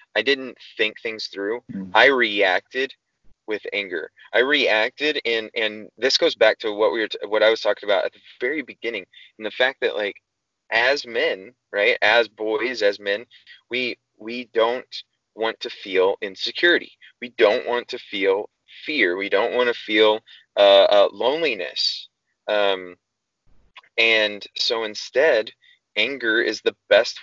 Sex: male